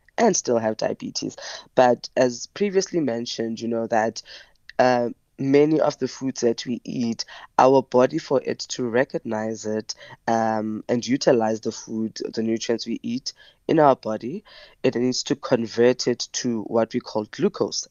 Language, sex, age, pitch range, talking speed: English, female, 20-39, 115-130 Hz, 160 wpm